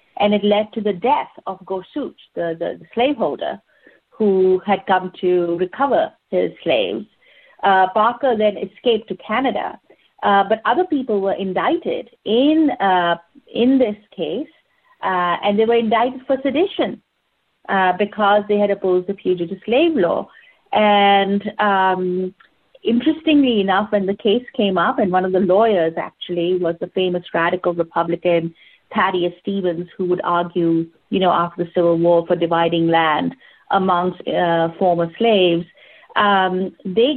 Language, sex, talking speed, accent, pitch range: English, female, 150 wpm, Indian, 175-215 Hz